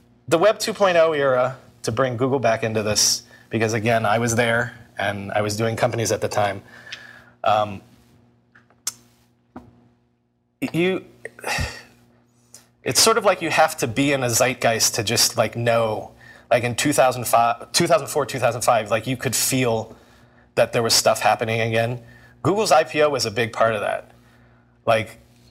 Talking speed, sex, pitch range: 160 wpm, male, 110-150 Hz